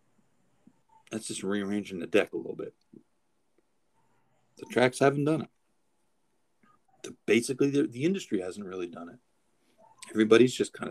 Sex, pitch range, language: male, 100-145 Hz, English